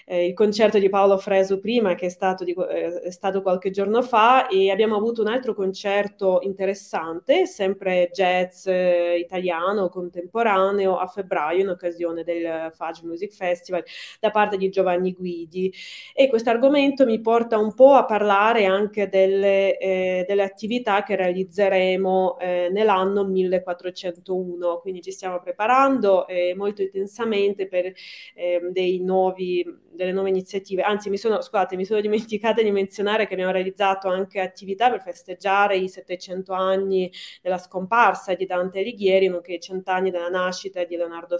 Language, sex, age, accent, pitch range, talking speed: Italian, female, 20-39, native, 180-205 Hz, 150 wpm